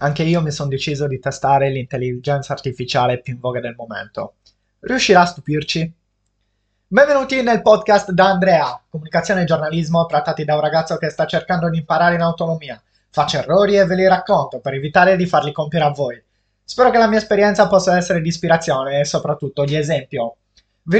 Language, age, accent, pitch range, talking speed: Italian, 20-39, native, 145-185 Hz, 180 wpm